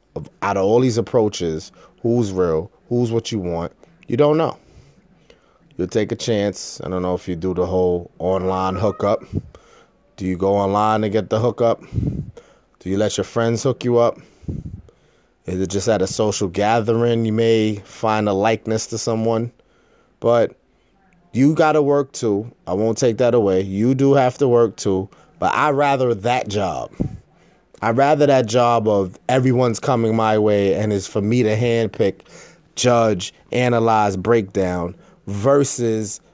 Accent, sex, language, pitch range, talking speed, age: American, male, English, 105-130 Hz, 165 wpm, 20-39